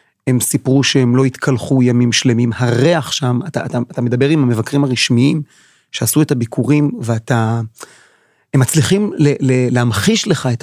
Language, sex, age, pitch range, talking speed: Hebrew, male, 40-59, 135-180 Hz, 150 wpm